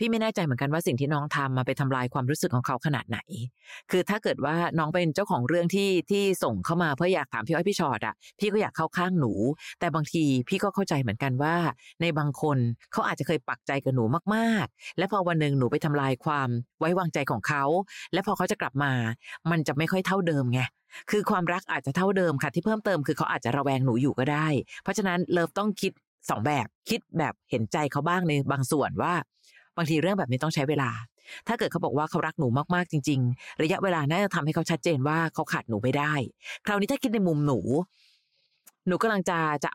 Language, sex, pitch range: Thai, female, 140-185 Hz